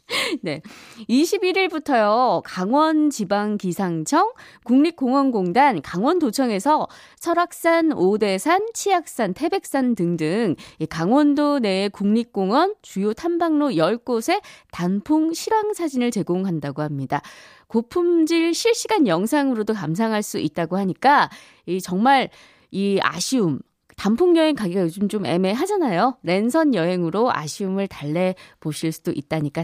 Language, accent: Korean, native